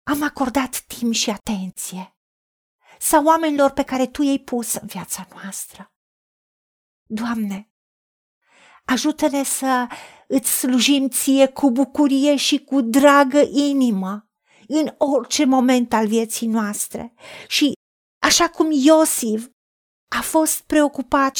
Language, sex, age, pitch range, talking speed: Romanian, female, 40-59, 225-285 Hz, 115 wpm